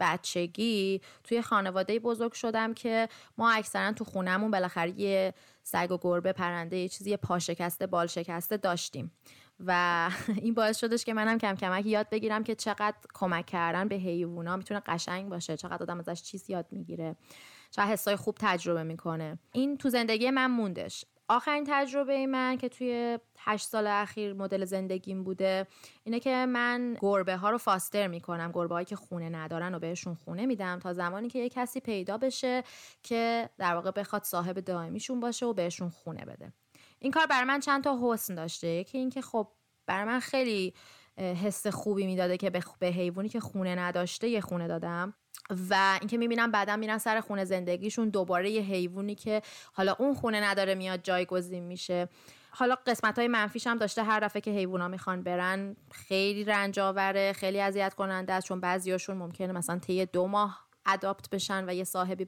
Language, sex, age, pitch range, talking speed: Persian, female, 20-39, 180-220 Hz, 175 wpm